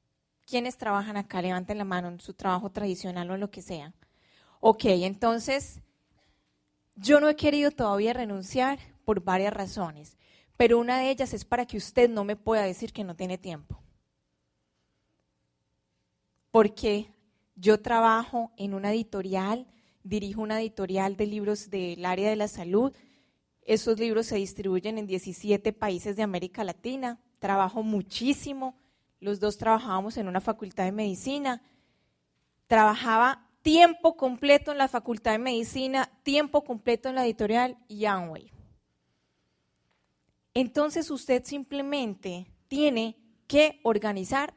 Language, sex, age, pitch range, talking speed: Spanish, female, 20-39, 190-245 Hz, 130 wpm